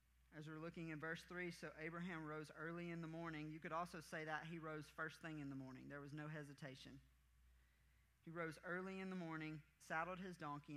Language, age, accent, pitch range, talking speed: English, 40-59, American, 135-165 Hz, 210 wpm